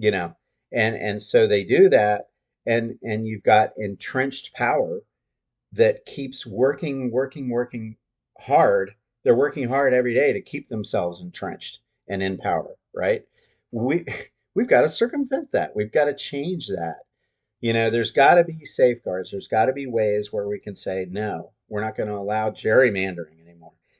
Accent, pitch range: American, 105-135 Hz